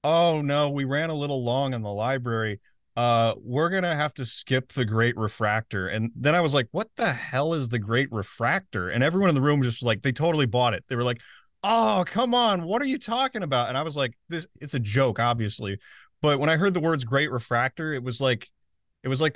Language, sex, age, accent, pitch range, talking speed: English, male, 30-49, American, 115-155 Hz, 240 wpm